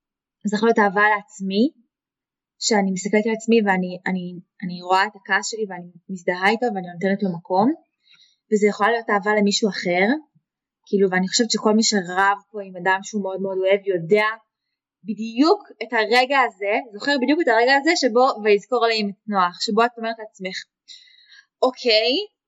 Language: Hebrew